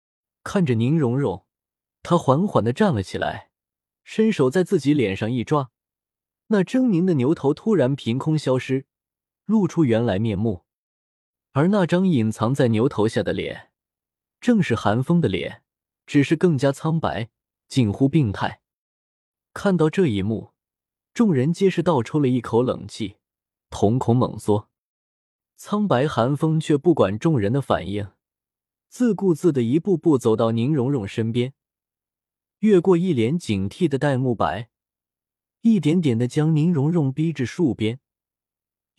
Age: 20-39